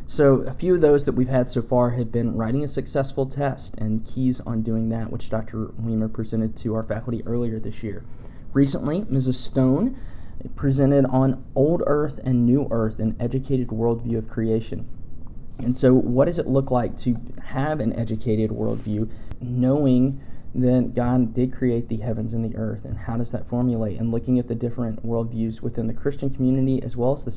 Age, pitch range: 20-39, 110-130 Hz